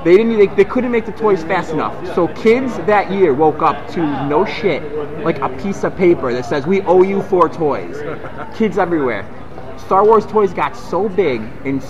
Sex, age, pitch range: male, 30-49, 140-185 Hz